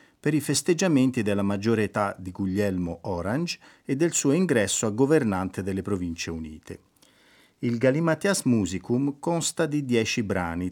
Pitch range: 95-130 Hz